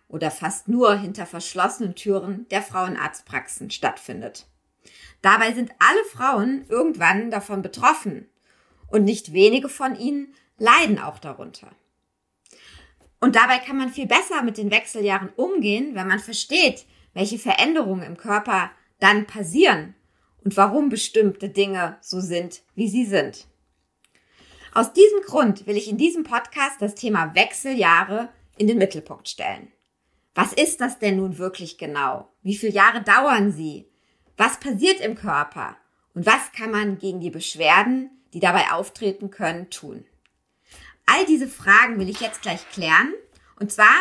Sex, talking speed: female, 145 wpm